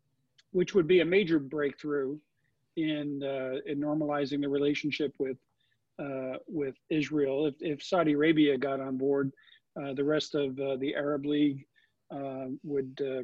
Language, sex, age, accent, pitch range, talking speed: English, male, 50-69, American, 135-155 Hz, 155 wpm